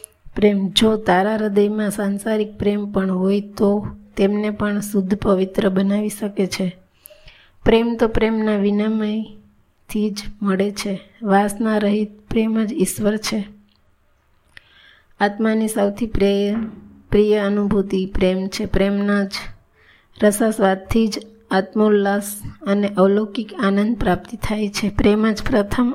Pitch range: 195-215 Hz